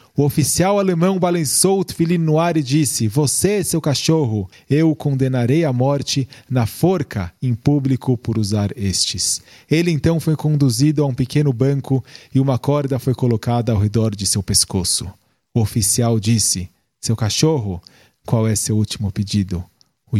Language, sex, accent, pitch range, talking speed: Portuguese, male, Brazilian, 115-170 Hz, 160 wpm